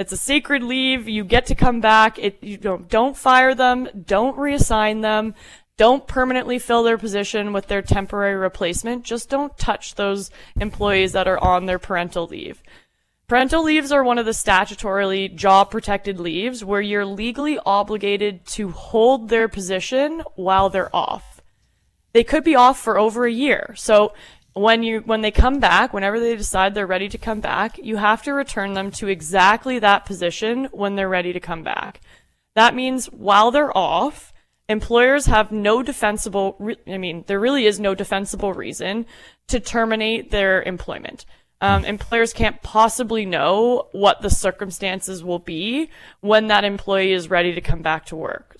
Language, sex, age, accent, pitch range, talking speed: English, female, 20-39, American, 195-230 Hz, 170 wpm